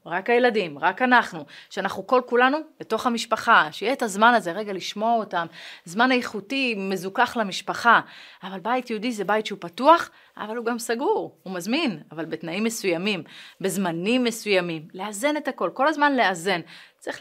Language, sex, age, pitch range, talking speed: Hebrew, female, 30-49, 190-265 Hz, 155 wpm